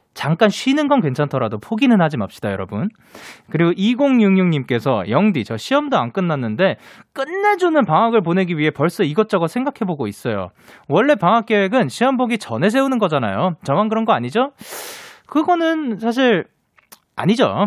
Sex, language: male, Korean